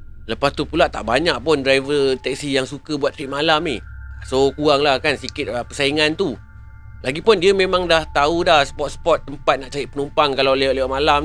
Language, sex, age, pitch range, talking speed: Malay, male, 30-49, 115-160 Hz, 185 wpm